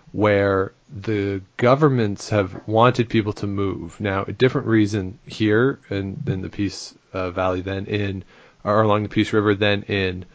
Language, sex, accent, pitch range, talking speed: English, male, American, 100-115 Hz, 160 wpm